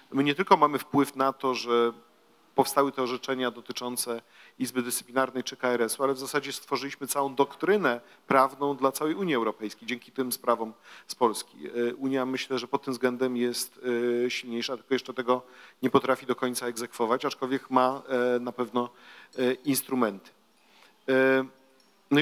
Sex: male